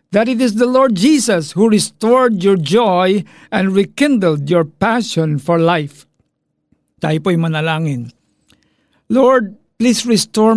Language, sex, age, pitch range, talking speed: Filipino, male, 50-69, 155-205 Hz, 125 wpm